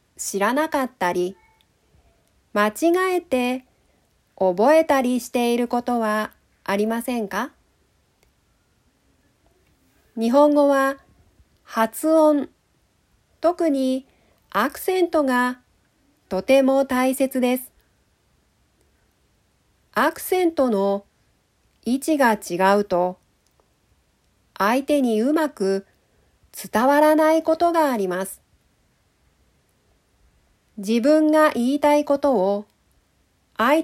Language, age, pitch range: Japanese, 40-59, 195-290 Hz